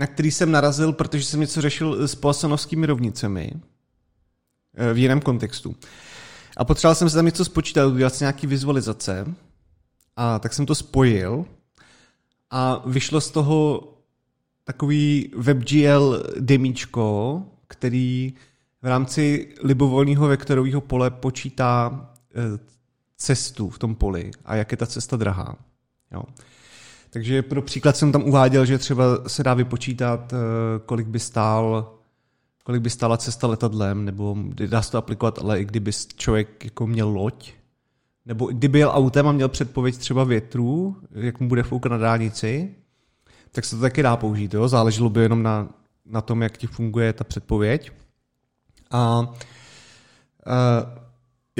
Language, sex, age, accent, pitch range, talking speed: Czech, male, 30-49, native, 115-140 Hz, 135 wpm